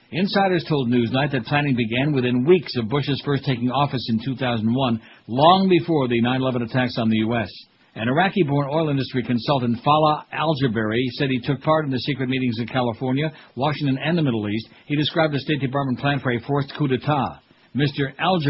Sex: male